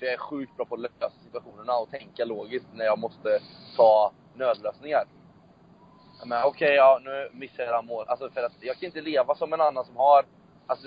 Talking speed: 205 wpm